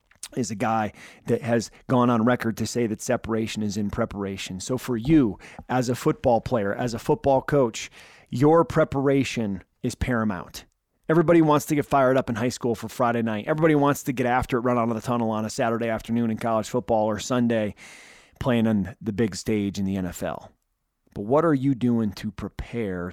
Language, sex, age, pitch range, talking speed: English, male, 30-49, 105-130 Hz, 200 wpm